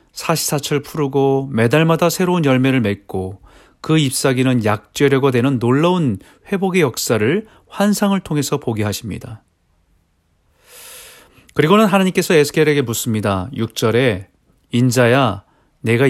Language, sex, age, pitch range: Korean, male, 40-59, 110-155 Hz